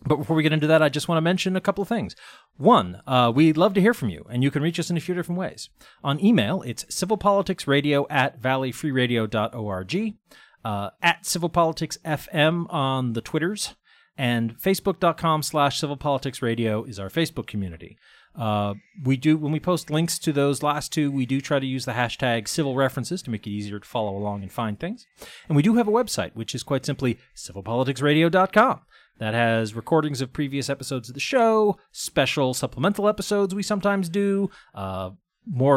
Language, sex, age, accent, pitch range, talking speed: English, male, 40-59, American, 120-180 Hz, 185 wpm